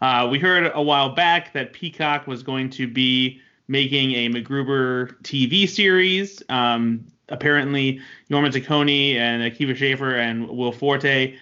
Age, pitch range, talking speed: 20-39, 120-140 Hz, 140 wpm